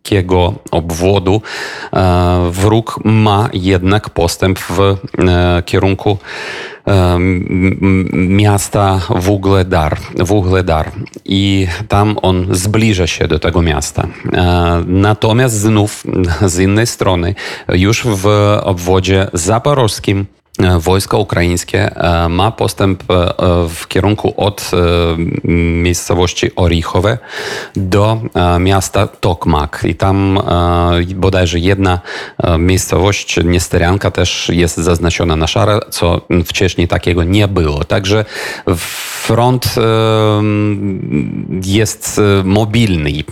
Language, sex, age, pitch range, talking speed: Polish, male, 40-59, 90-105 Hz, 80 wpm